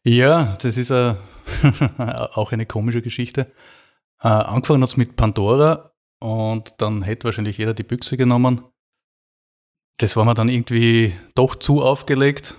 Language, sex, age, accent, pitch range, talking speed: German, male, 30-49, Austrian, 105-125 Hz, 140 wpm